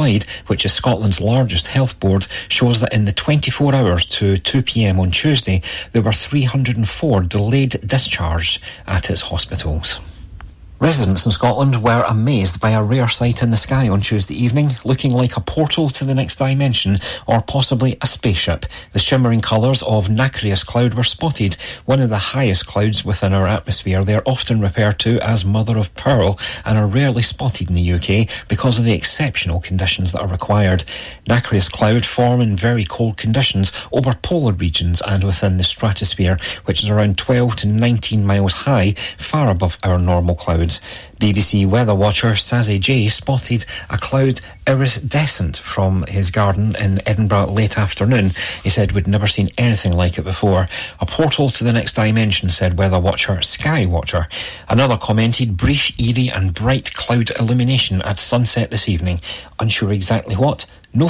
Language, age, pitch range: English, 40-59, 95-125 Hz